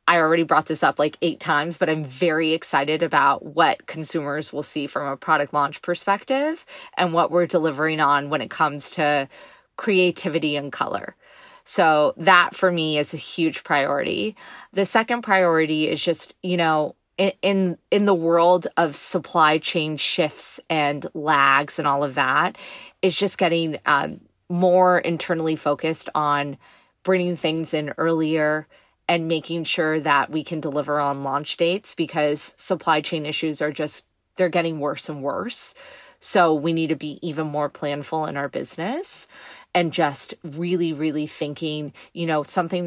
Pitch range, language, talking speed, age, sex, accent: 150-180 Hz, English, 160 wpm, 20-39, female, American